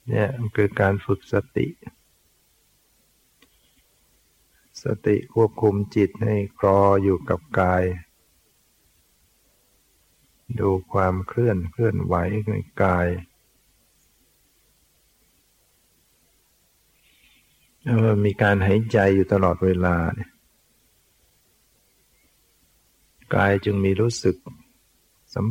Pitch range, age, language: 90-110 Hz, 60-79, Thai